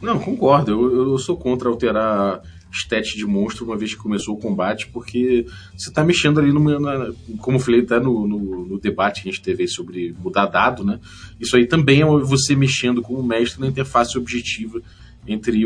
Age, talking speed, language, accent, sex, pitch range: 20-39, 205 wpm, Portuguese, Brazilian, male, 100-125 Hz